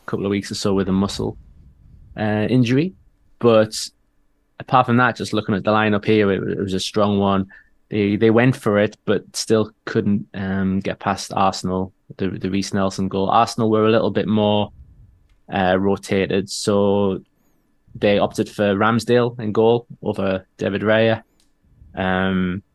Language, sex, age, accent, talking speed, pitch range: English, male, 20-39, British, 165 wpm, 95-110 Hz